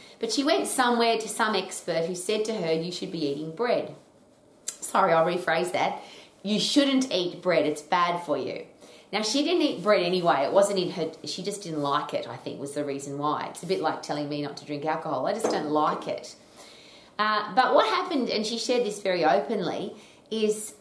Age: 30-49